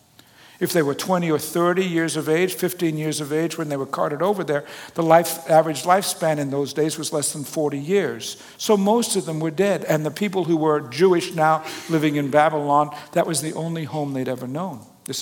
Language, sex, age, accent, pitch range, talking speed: English, male, 60-79, American, 150-190 Hz, 215 wpm